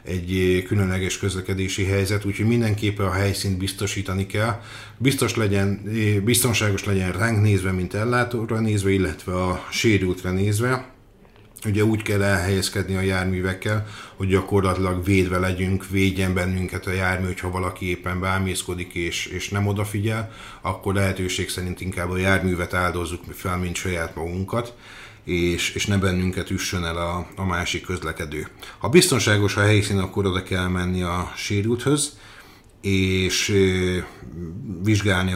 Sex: male